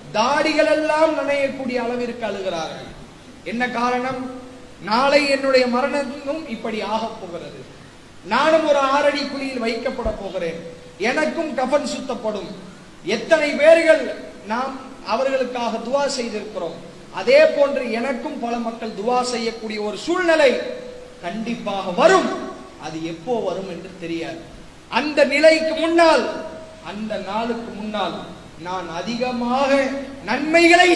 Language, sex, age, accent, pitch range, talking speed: English, male, 30-49, Indian, 220-285 Hz, 110 wpm